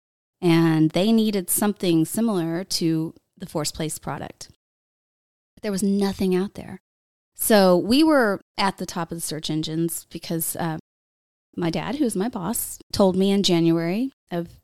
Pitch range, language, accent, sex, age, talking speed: 165-200 Hz, English, American, female, 20-39, 150 wpm